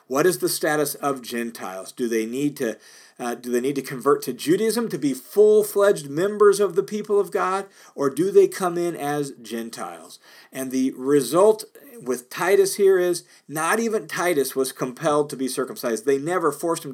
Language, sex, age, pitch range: English, male, 40-59, 130-200 Hz